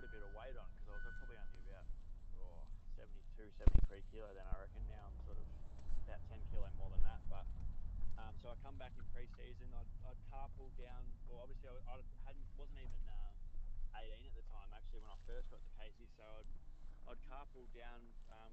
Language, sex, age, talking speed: English, male, 20-39, 205 wpm